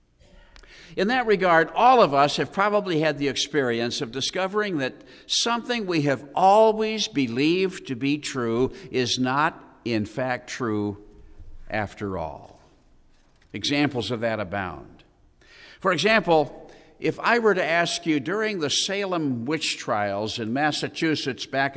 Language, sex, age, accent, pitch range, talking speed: English, male, 50-69, American, 105-160 Hz, 135 wpm